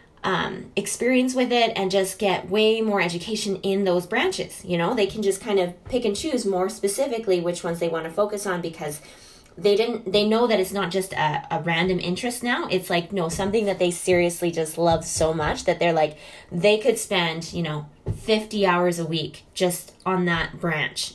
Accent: American